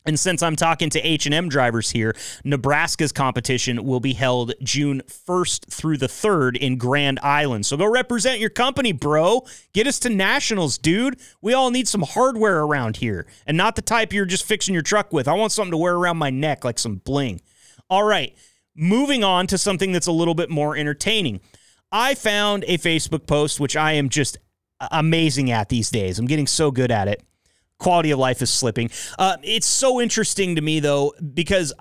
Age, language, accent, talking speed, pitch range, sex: 30-49, English, American, 195 wpm, 130-200 Hz, male